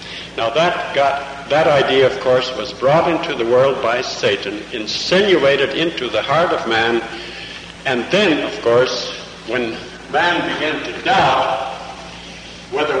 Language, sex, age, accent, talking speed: English, male, 60-79, American, 140 wpm